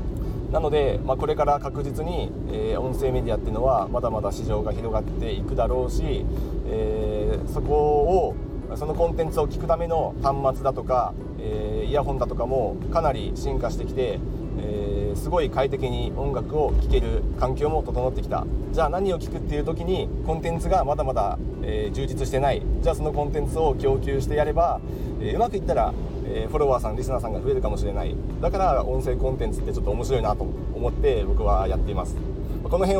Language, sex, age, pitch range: Japanese, male, 40-59, 100-140 Hz